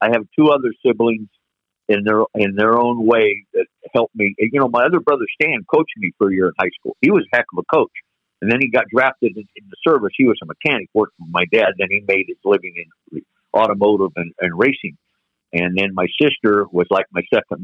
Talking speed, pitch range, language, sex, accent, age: 240 wpm, 105-160 Hz, English, male, American, 50-69